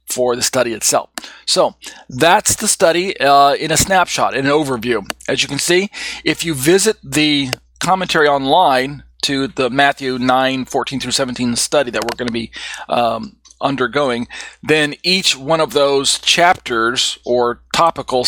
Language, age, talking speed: English, 40-59, 155 wpm